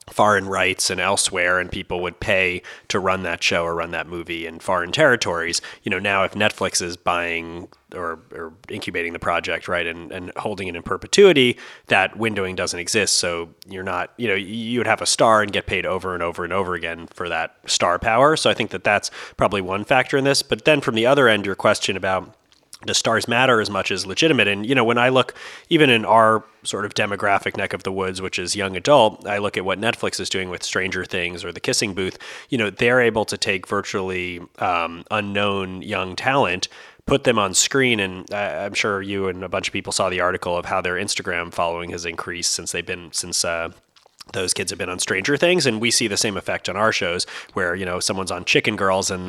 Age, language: 30-49, English